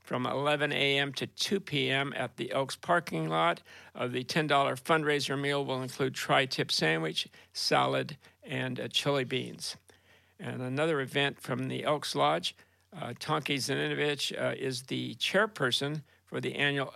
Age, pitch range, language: 50-69, 130-150 Hz, English